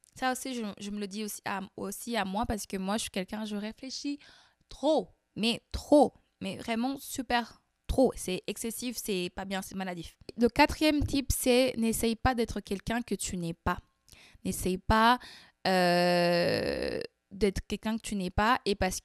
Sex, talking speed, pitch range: female, 180 wpm, 195-250 Hz